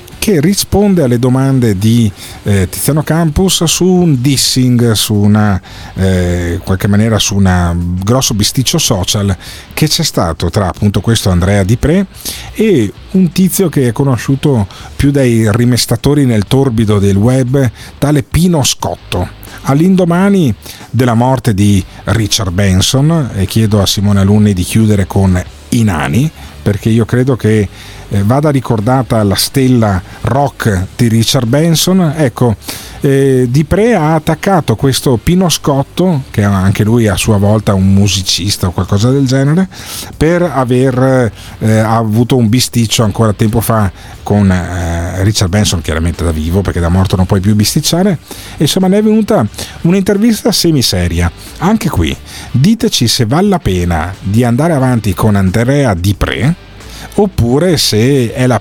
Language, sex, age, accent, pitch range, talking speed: Italian, male, 40-59, native, 100-140 Hz, 145 wpm